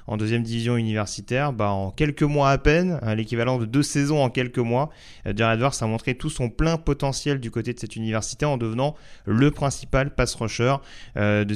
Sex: male